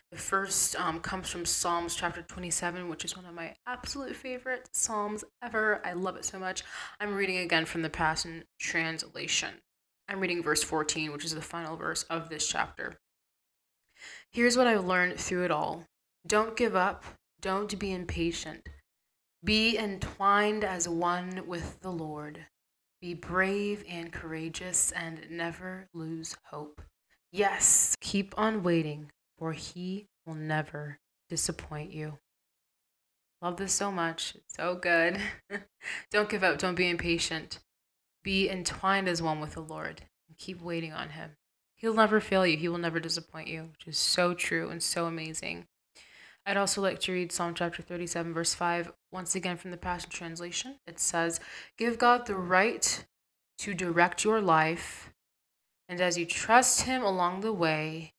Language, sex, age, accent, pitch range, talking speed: English, female, 20-39, American, 165-195 Hz, 160 wpm